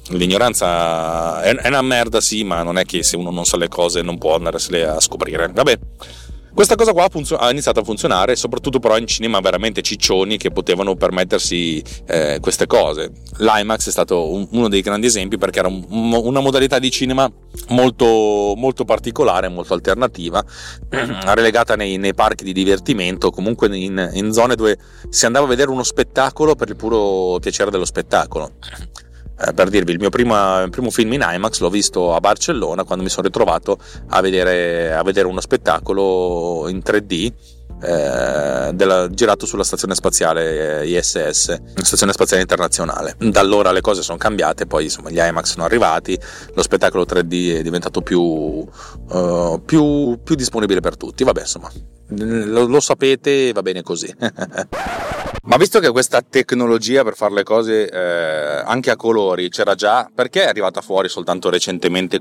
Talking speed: 165 wpm